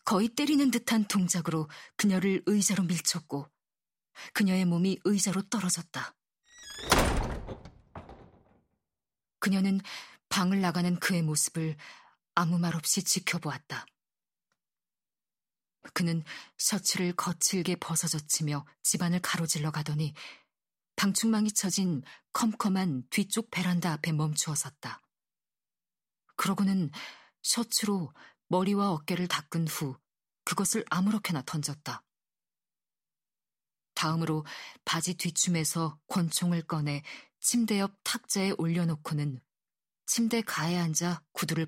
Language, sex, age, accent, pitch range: Korean, female, 40-59, native, 160-195 Hz